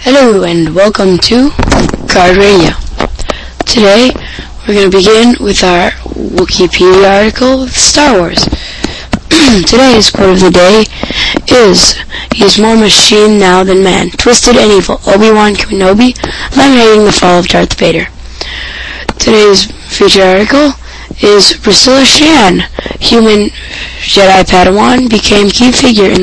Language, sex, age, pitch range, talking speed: English, female, 10-29, 185-230 Hz, 125 wpm